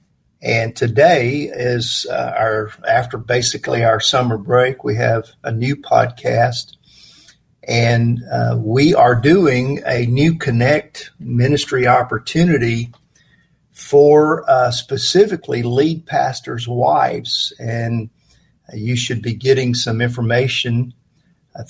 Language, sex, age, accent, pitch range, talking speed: English, male, 50-69, American, 115-135 Hz, 110 wpm